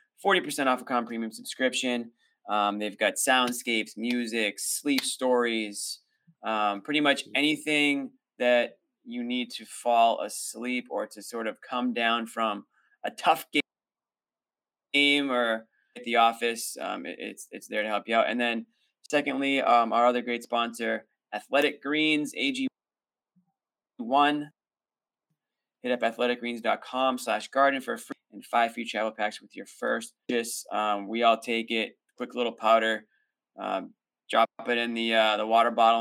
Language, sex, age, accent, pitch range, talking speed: English, male, 20-39, American, 115-150 Hz, 150 wpm